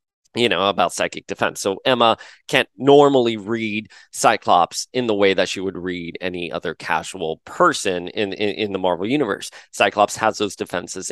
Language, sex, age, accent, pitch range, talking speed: English, male, 30-49, American, 100-155 Hz, 175 wpm